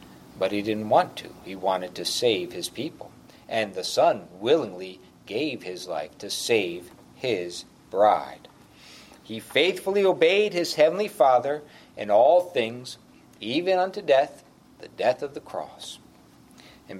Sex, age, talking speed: male, 60-79, 140 wpm